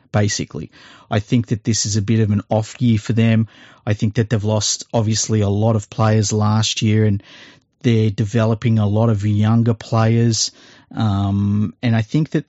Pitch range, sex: 110-125 Hz, male